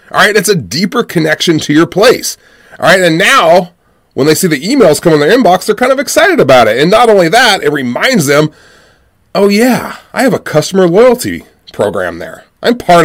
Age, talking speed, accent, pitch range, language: 30-49, 210 wpm, American, 130-170 Hz, English